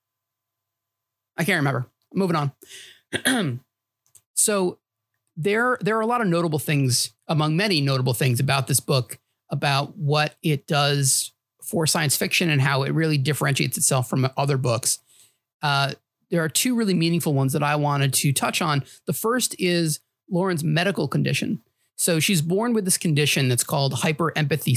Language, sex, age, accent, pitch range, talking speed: English, male, 30-49, American, 135-175 Hz, 160 wpm